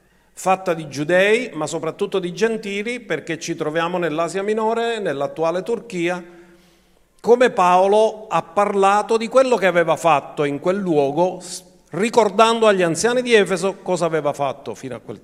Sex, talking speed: male, 145 wpm